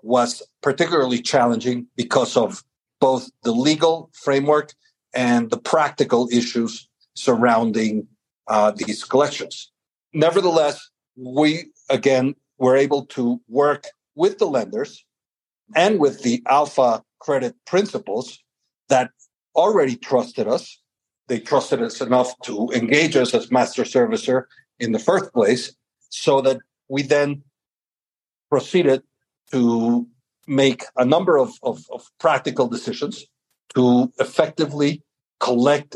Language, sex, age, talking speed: English, male, 60-79, 110 wpm